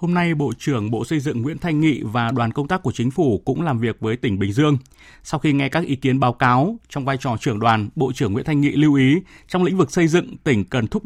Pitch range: 120-155 Hz